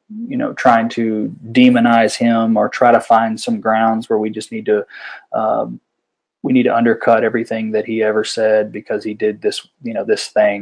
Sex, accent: male, American